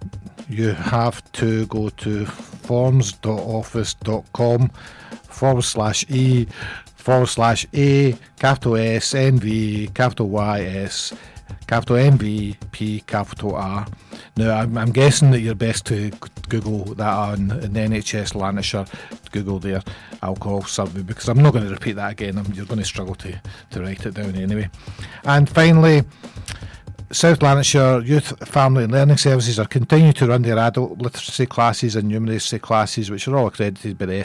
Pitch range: 105-130 Hz